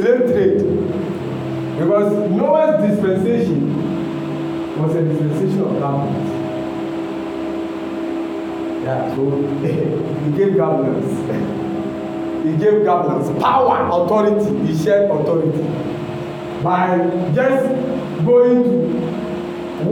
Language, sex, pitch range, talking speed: English, male, 145-225 Hz, 75 wpm